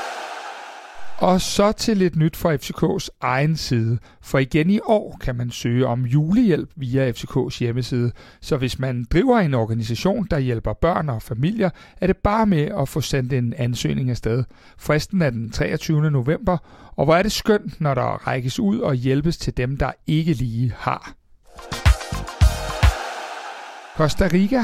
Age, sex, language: 60-79, male, Danish